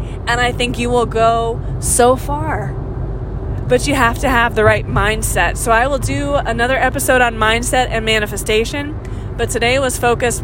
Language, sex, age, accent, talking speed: English, female, 20-39, American, 170 wpm